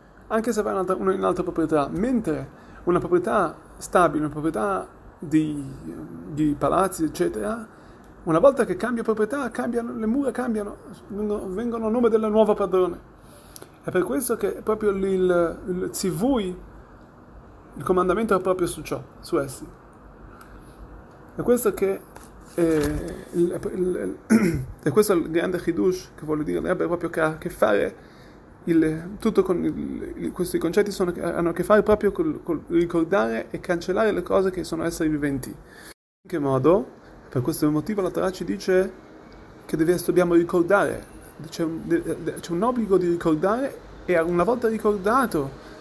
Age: 30-49